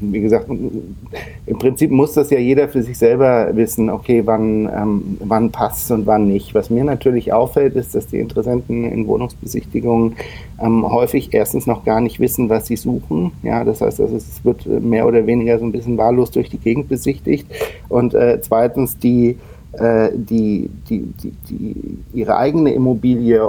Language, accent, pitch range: German, German, 110-120 Hz